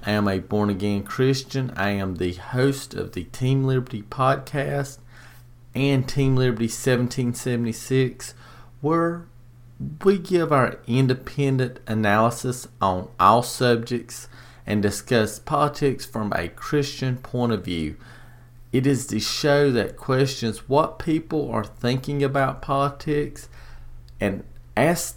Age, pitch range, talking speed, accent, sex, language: 40-59, 115-135 Hz, 120 wpm, American, male, English